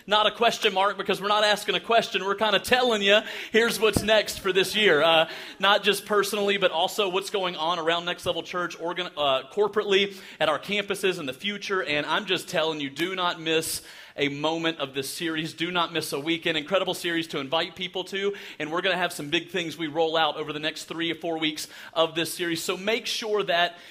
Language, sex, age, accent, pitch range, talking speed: English, male, 30-49, American, 165-210 Hz, 230 wpm